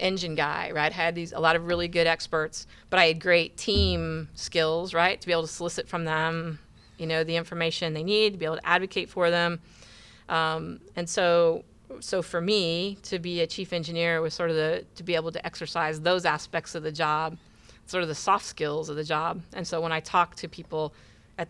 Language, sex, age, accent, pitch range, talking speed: English, female, 40-59, American, 160-175 Hz, 220 wpm